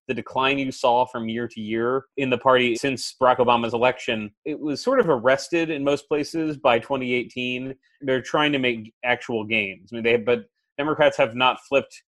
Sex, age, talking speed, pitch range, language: male, 30-49, 190 wpm, 115-145 Hz, English